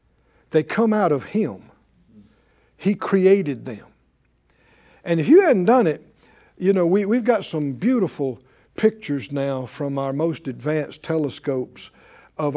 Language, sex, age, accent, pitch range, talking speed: English, male, 60-79, American, 140-220 Hz, 140 wpm